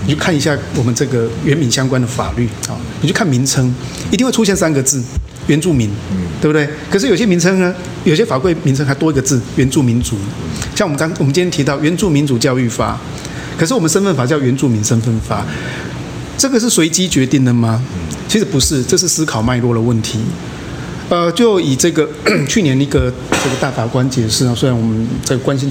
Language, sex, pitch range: Chinese, male, 120-160 Hz